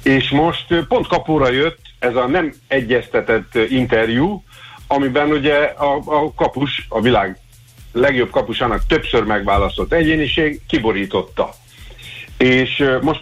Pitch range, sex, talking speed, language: 110-150 Hz, male, 115 wpm, Hungarian